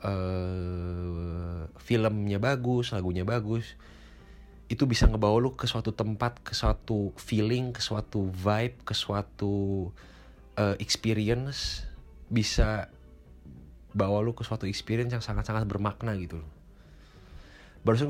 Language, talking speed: Indonesian, 110 wpm